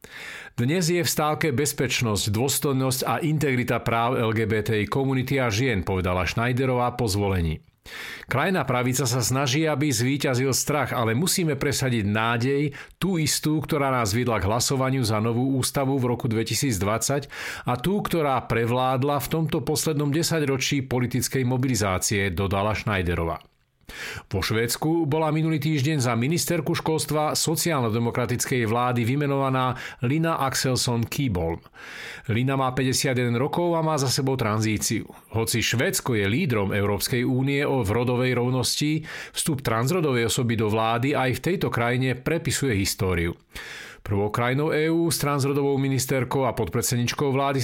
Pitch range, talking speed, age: 115-145 Hz, 130 wpm, 50-69